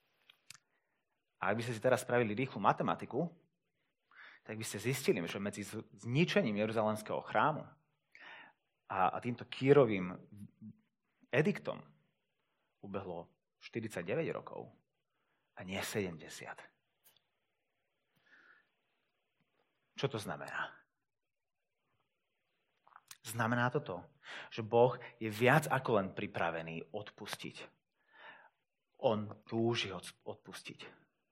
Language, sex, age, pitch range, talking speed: Slovak, male, 30-49, 120-165 Hz, 85 wpm